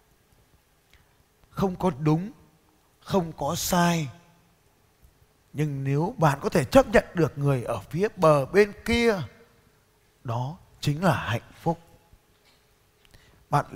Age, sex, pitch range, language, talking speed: 20-39, male, 120-170 Hz, Vietnamese, 115 wpm